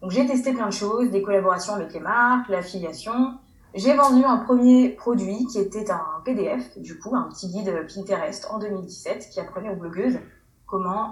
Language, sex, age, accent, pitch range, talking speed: French, female, 20-39, French, 195-235 Hz, 185 wpm